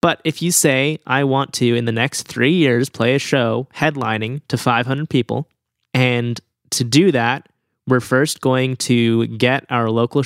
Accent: American